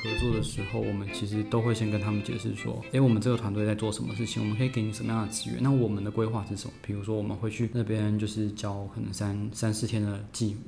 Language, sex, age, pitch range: Chinese, male, 20-39, 105-120 Hz